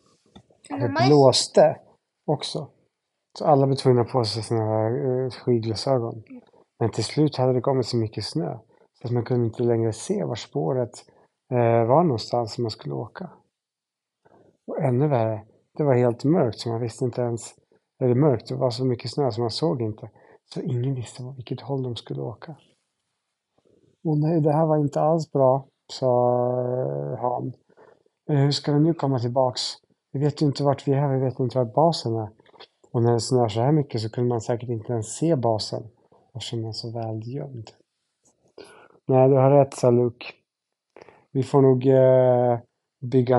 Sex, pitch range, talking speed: male, 120-145 Hz, 175 wpm